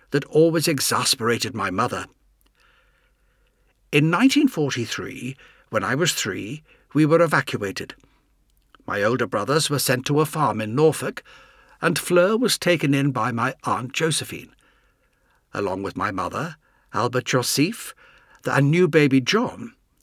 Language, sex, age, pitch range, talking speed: English, male, 60-79, 125-170 Hz, 130 wpm